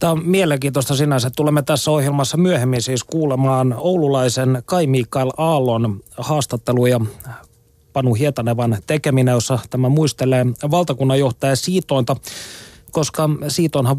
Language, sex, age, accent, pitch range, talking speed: Finnish, male, 30-49, native, 120-150 Hz, 105 wpm